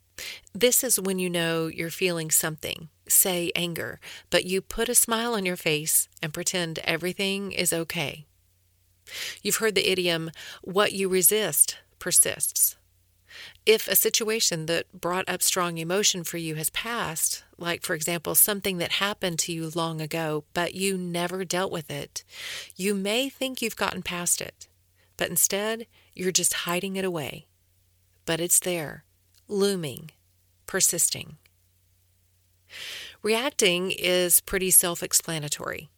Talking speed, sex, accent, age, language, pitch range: 135 wpm, female, American, 40-59, English, 155-195 Hz